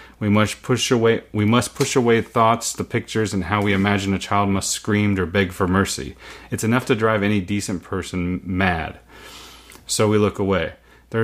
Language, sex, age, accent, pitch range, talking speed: English, male, 30-49, American, 95-115 Hz, 190 wpm